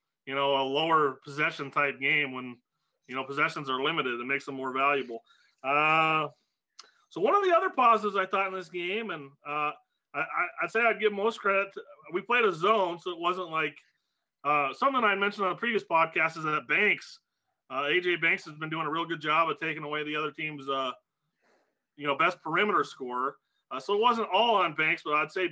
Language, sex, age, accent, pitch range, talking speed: English, male, 30-49, American, 150-210 Hz, 205 wpm